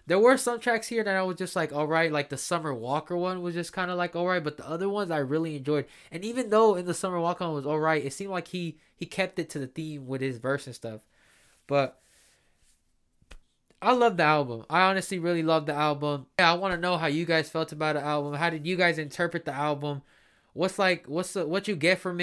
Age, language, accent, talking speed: 20-39, English, American, 255 wpm